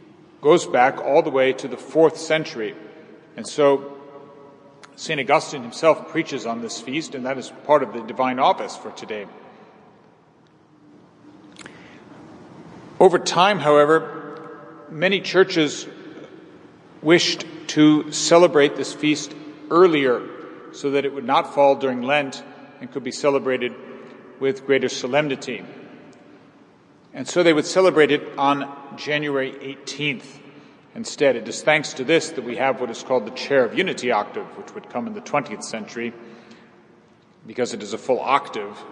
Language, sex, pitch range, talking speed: English, male, 130-155 Hz, 145 wpm